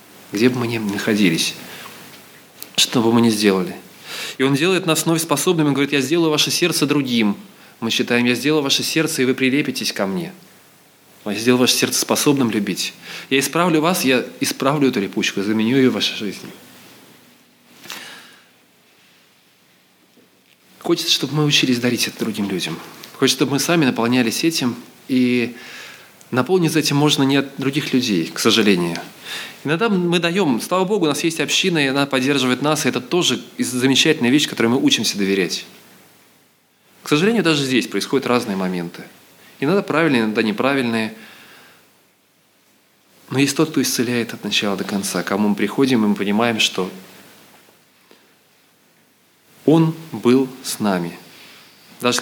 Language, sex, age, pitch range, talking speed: Russian, male, 20-39, 115-150 Hz, 150 wpm